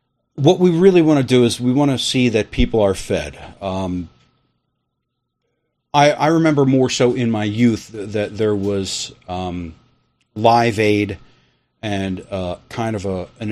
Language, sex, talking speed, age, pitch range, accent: English, male, 155 wpm, 40-59, 100-125 Hz, American